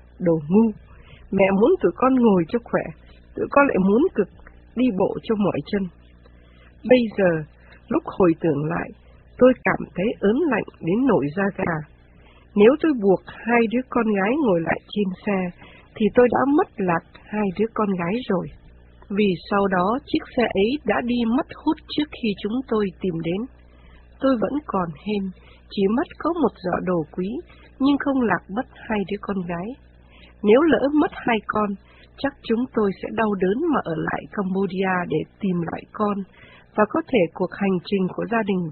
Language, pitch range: Vietnamese, 170-235 Hz